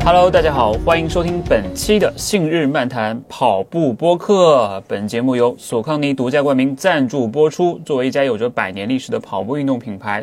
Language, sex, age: Chinese, male, 30-49